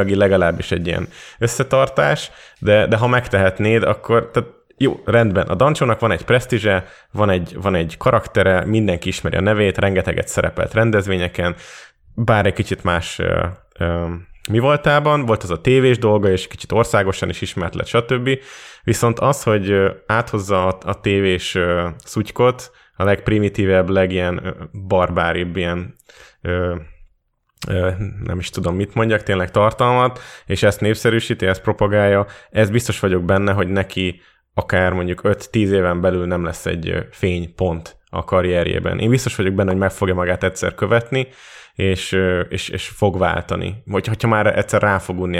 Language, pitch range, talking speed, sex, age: Hungarian, 90-110 Hz, 150 wpm, male, 20-39